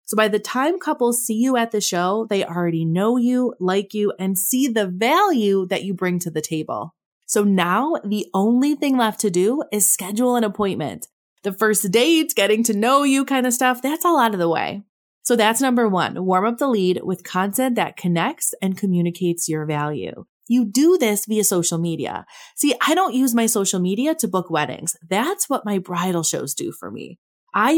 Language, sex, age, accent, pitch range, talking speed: English, female, 20-39, American, 180-245 Hz, 205 wpm